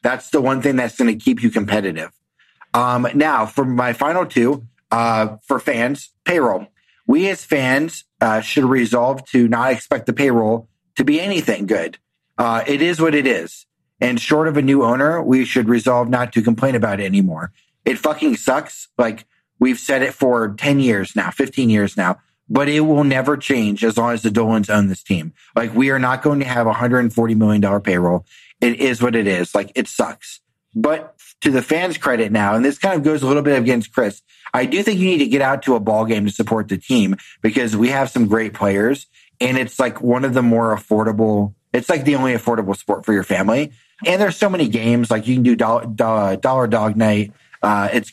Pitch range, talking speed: 110-135 Hz, 215 wpm